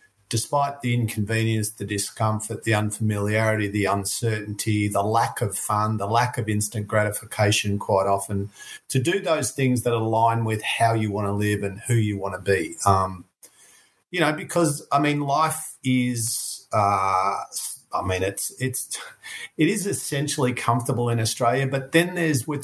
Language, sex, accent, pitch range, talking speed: English, male, Australian, 105-130 Hz, 155 wpm